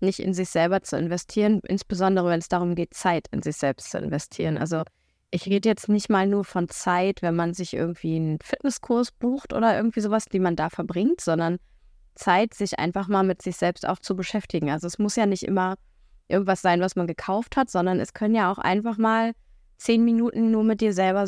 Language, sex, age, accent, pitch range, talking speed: German, female, 20-39, German, 175-215 Hz, 215 wpm